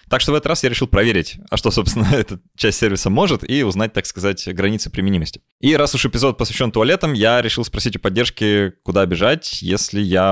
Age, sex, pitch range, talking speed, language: 20-39, male, 100-125 Hz, 210 wpm, Russian